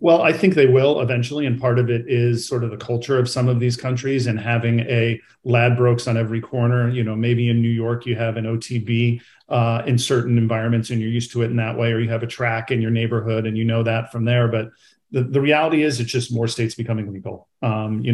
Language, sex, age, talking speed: English, male, 40-59, 250 wpm